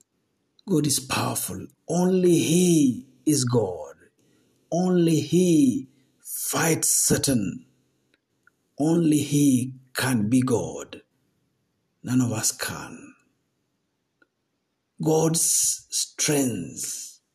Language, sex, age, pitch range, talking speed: Swahili, male, 60-79, 125-160 Hz, 75 wpm